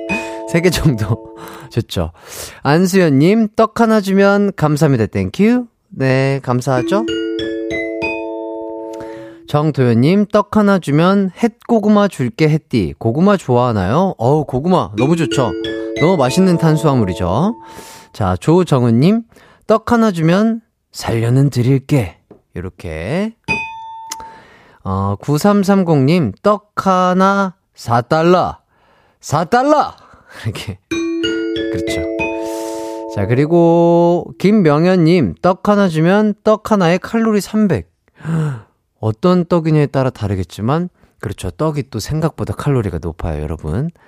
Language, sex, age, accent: Korean, male, 30-49, native